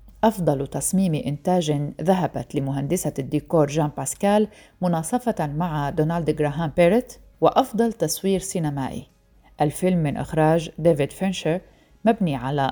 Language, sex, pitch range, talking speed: Arabic, female, 150-190 Hz, 110 wpm